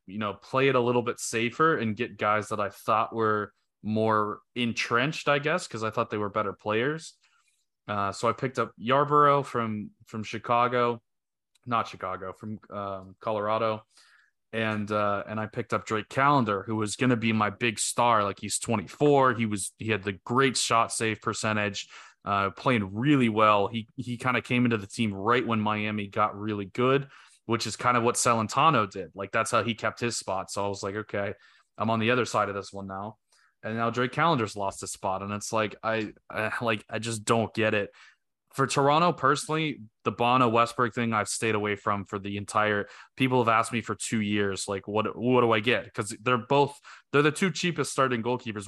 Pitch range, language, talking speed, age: 105-120 Hz, English, 205 wpm, 20-39